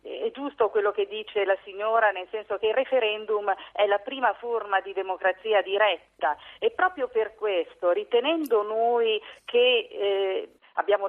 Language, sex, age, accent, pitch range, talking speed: Italian, female, 50-69, native, 195-290 Hz, 150 wpm